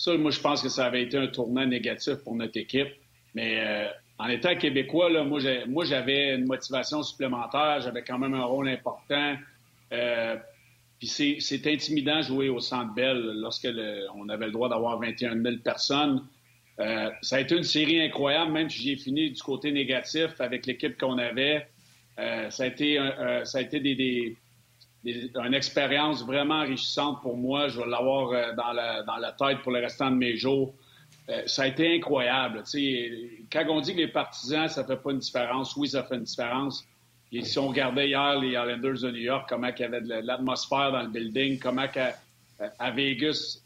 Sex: male